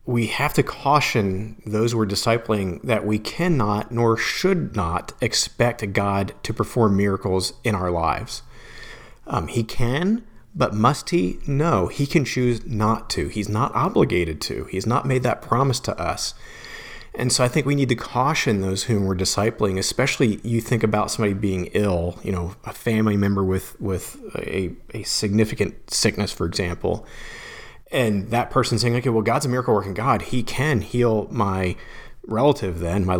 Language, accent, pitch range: English, American, 100-125 Hz